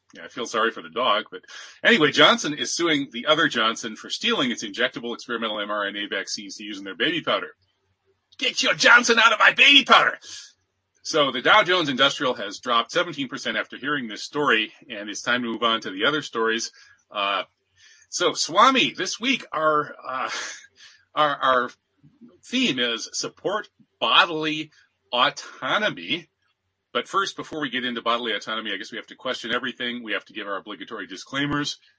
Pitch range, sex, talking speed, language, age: 115-160 Hz, male, 175 wpm, English, 40-59